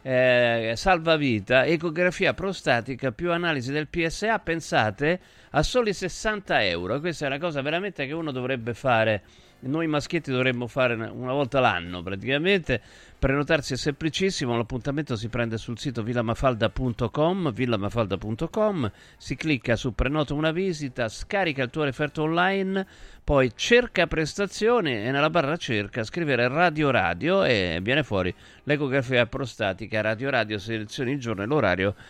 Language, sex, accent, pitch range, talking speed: Italian, male, native, 115-155 Hz, 135 wpm